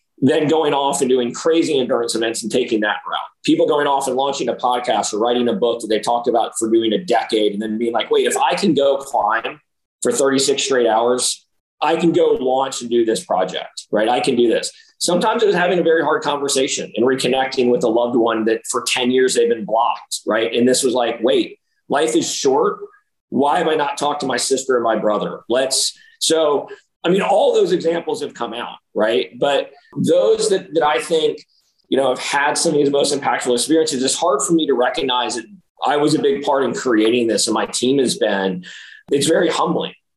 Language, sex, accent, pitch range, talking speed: English, male, American, 125-210 Hz, 225 wpm